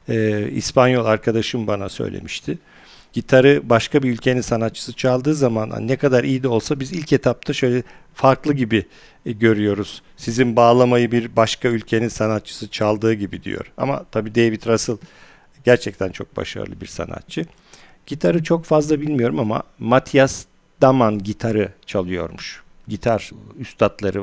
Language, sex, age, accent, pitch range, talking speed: Turkish, male, 50-69, native, 110-130 Hz, 135 wpm